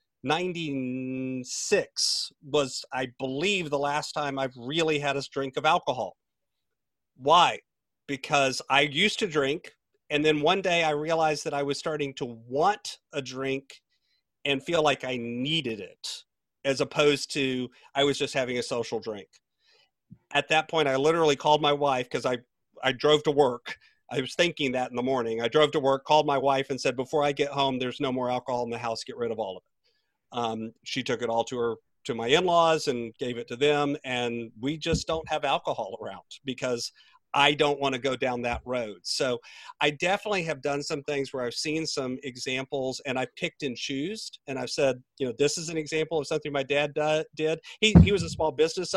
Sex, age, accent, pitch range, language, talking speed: male, 40-59, American, 130-160 Hz, English, 200 wpm